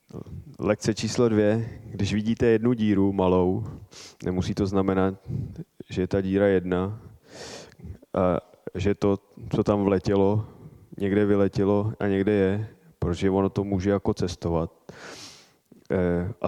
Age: 20-39